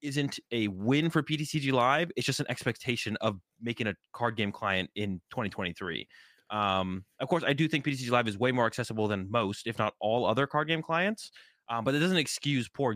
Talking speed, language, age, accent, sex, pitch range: 210 wpm, English, 20-39, American, male, 105-135 Hz